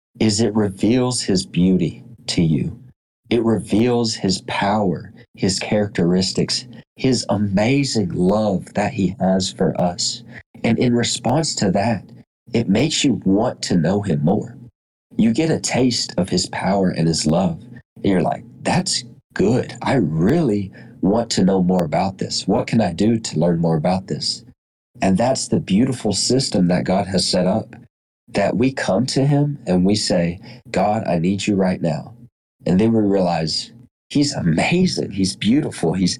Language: English